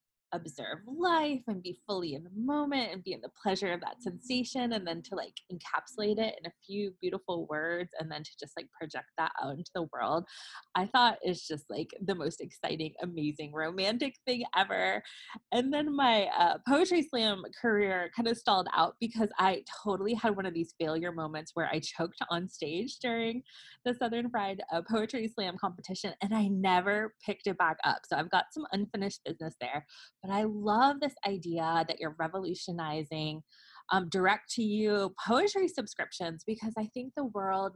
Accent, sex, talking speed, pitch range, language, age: American, female, 185 wpm, 165-225 Hz, English, 20-39